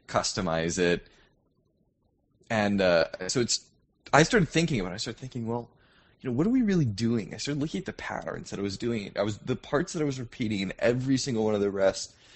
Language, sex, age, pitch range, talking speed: English, male, 20-39, 95-120 Hz, 230 wpm